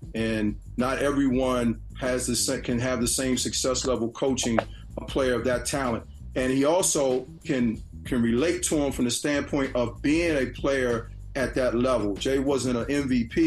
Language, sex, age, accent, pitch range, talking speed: English, male, 40-59, American, 115-135 Hz, 175 wpm